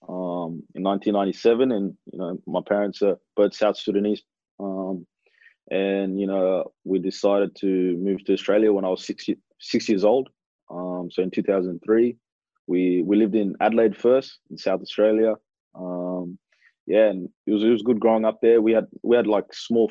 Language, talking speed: English, 180 wpm